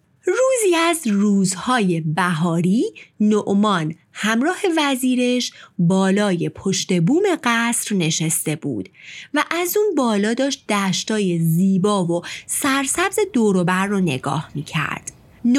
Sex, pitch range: female, 180-280 Hz